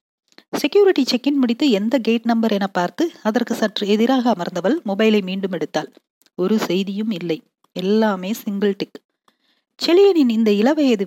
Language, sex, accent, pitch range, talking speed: Tamil, female, native, 195-255 Hz, 130 wpm